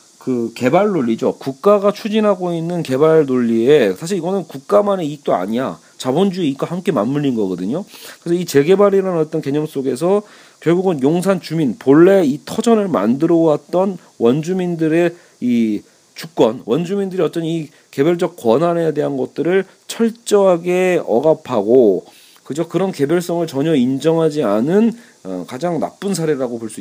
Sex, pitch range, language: male, 140-190 Hz, Korean